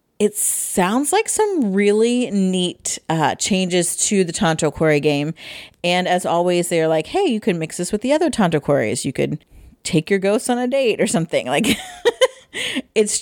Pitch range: 165-210 Hz